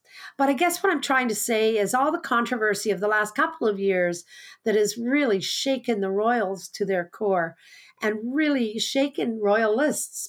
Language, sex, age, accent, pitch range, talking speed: English, female, 50-69, American, 200-255 Hz, 180 wpm